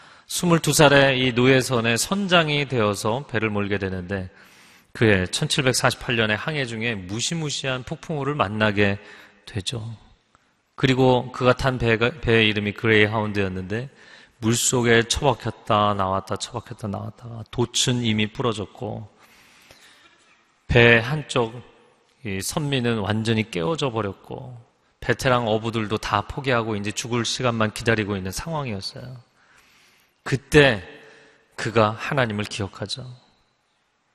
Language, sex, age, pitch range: Korean, male, 30-49, 110-150 Hz